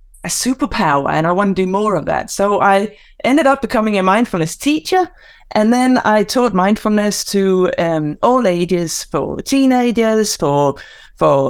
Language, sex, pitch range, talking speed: English, female, 180-235 Hz, 160 wpm